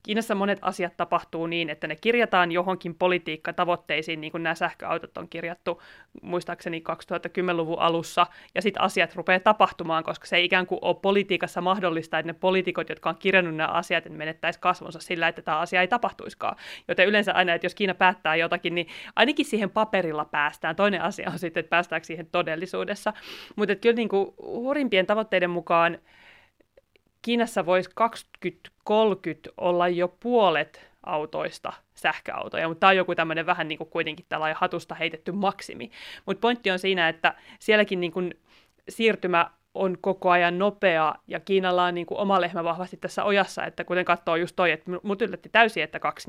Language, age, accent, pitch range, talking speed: Finnish, 30-49, native, 170-190 Hz, 170 wpm